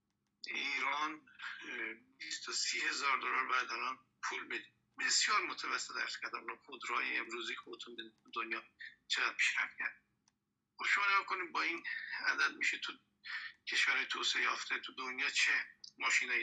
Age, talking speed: 50-69, 120 wpm